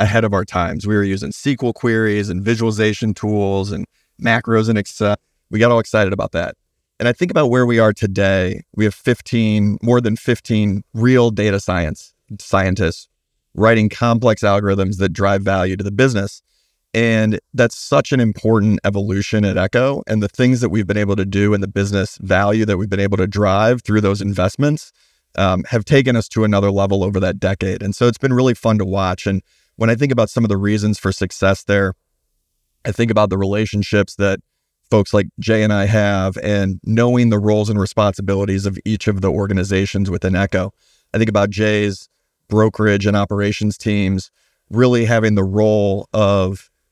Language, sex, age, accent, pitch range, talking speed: English, male, 30-49, American, 95-110 Hz, 190 wpm